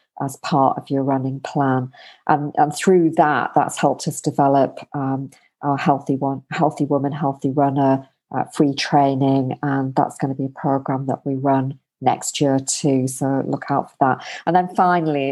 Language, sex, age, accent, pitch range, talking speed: English, female, 40-59, British, 135-150 Hz, 180 wpm